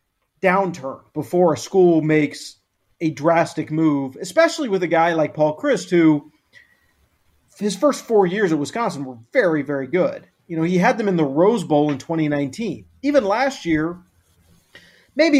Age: 40-59